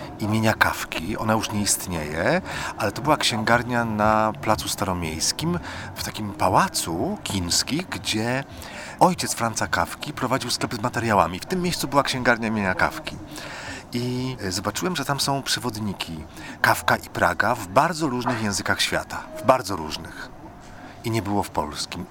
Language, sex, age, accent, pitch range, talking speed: Polish, male, 40-59, native, 100-125 Hz, 145 wpm